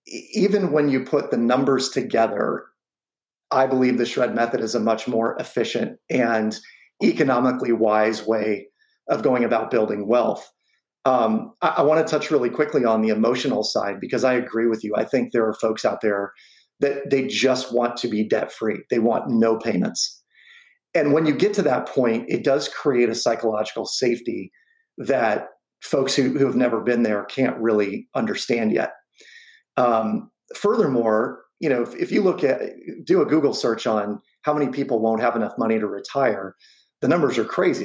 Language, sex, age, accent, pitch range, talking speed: English, male, 40-59, American, 110-140 Hz, 180 wpm